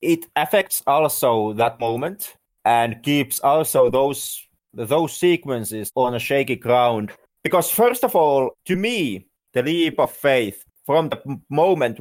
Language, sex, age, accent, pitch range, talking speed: English, male, 30-49, Finnish, 120-160 Hz, 140 wpm